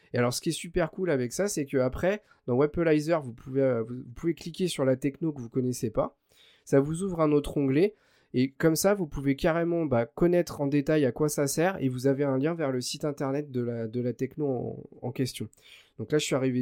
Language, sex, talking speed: French, male, 245 wpm